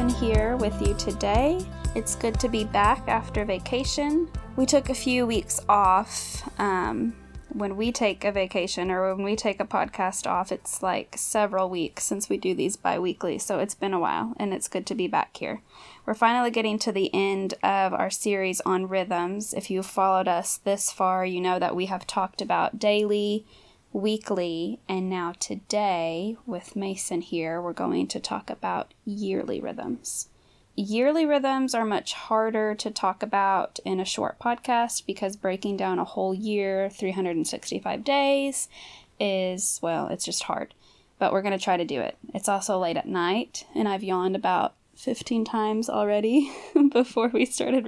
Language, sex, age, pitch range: English, female, 10-29, 185-225 Hz